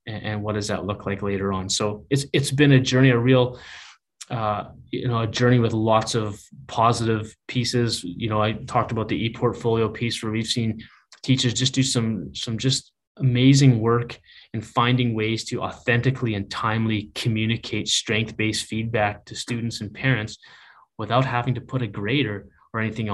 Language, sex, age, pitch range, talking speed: English, male, 20-39, 105-125 Hz, 175 wpm